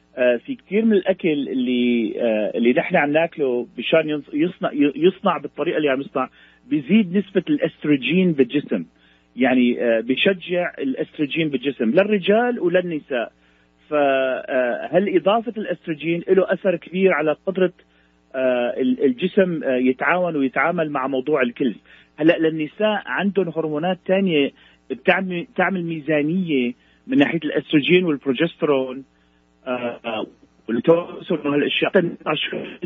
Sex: male